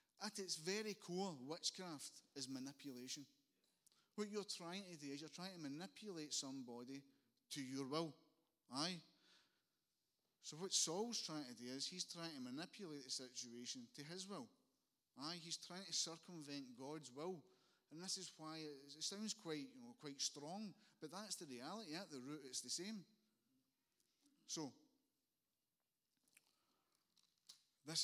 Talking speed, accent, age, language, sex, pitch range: 145 wpm, British, 30-49, English, male, 125-175 Hz